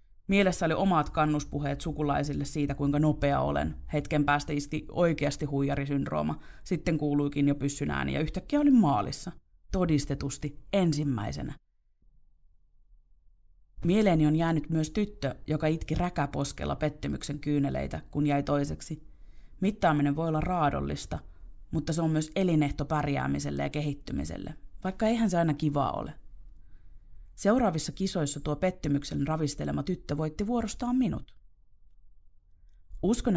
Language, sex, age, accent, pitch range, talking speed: Finnish, female, 30-49, native, 140-170 Hz, 115 wpm